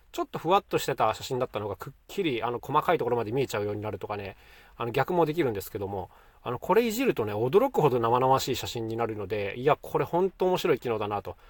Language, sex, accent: Japanese, male, native